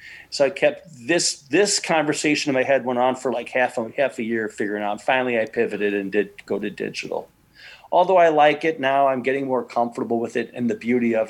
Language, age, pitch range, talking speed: English, 40-59, 120-150 Hz, 230 wpm